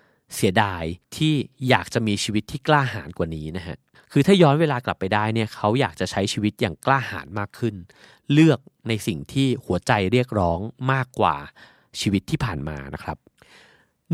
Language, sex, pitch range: Thai, male, 100-135 Hz